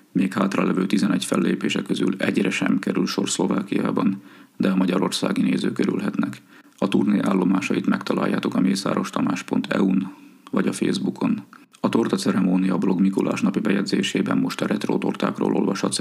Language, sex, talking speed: Hungarian, male, 135 wpm